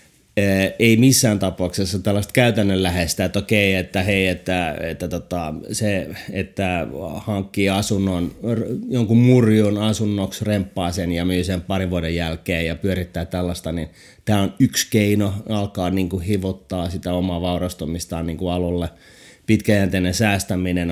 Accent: native